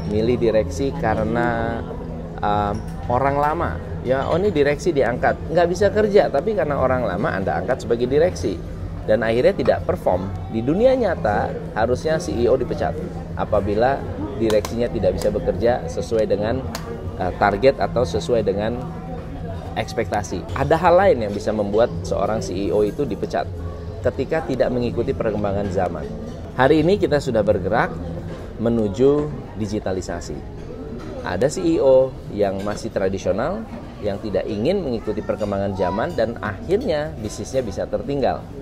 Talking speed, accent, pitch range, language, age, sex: 130 wpm, native, 90-125 Hz, Indonesian, 20-39, male